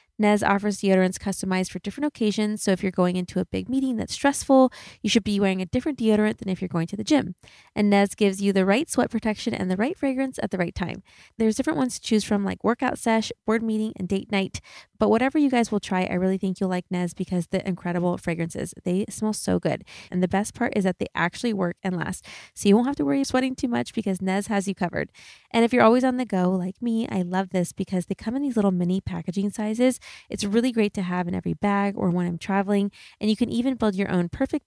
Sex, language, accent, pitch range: female, English, American, 185-230 Hz